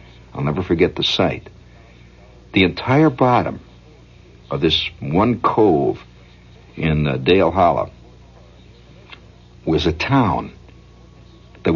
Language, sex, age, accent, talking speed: English, male, 60-79, American, 100 wpm